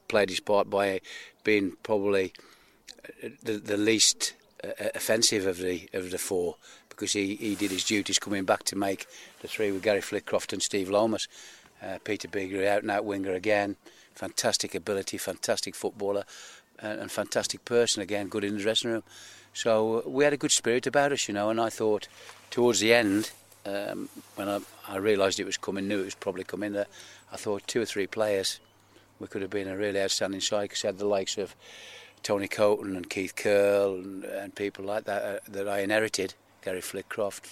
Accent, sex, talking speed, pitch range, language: British, male, 190 wpm, 100-110 Hz, English